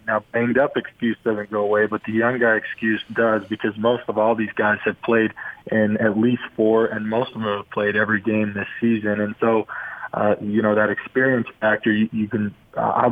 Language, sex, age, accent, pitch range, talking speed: English, male, 20-39, American, 105-115 Hz, 215 wpm